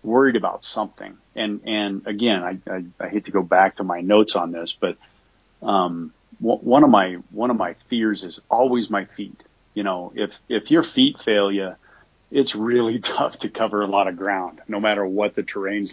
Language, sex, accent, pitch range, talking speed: English, male, American, 100-130 Hz, 205 wpm